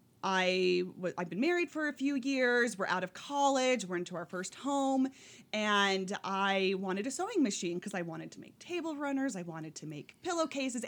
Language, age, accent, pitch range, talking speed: English, 30-49, American, 175-240 Hz, 200 wpm